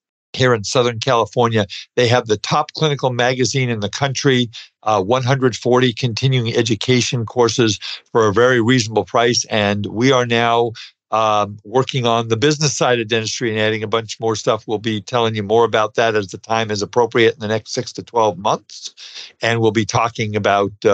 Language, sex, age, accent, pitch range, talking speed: English, male, 50-69, American, 110-130 Hz, 185 wpm